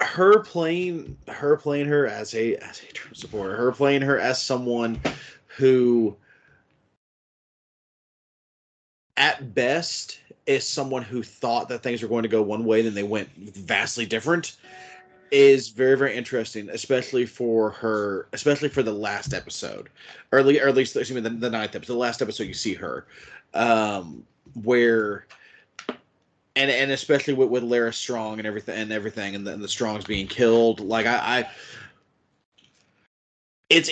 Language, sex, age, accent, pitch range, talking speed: English, male, 30-49, American, 110-135 Hz, 150 wpm